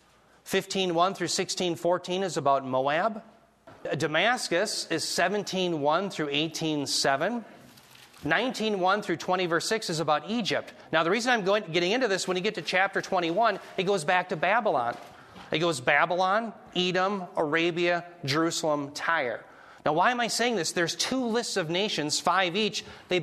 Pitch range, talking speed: 140-185 Hz, 150 wpm